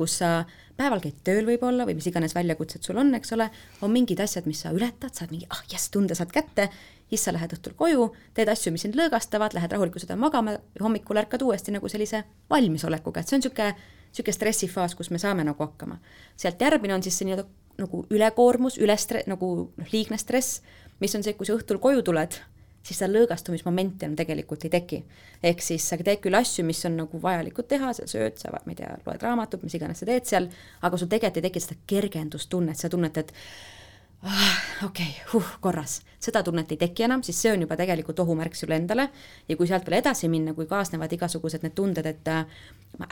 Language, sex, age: English, female, 30-49